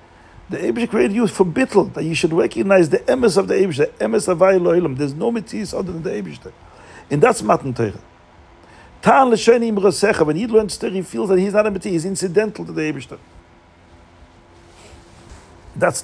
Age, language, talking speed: 50-69, English, 185 wpm